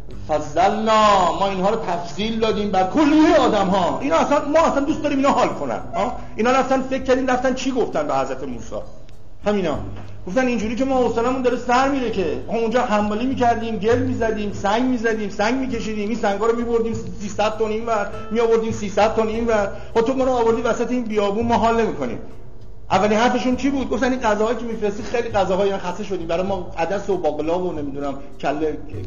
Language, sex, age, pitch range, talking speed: Persian, male, 50-69, 195-255 Hz, 195 wpm